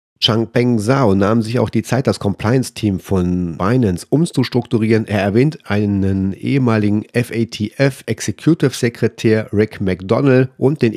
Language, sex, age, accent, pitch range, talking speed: German, male, 40-59, German, 105-125 Hz, 120 wpm